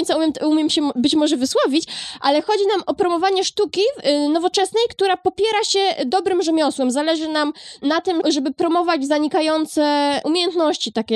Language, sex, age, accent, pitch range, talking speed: Polish, female, 20-39, native, 255-315 Hz, 145 wpm